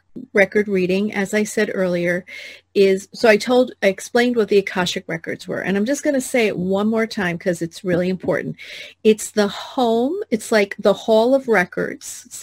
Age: 40-59